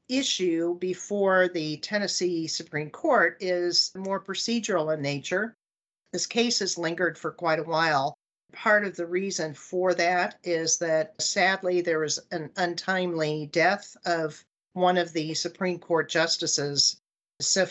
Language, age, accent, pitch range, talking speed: English, 50-69, American, 160-200 Hz, 140 wpm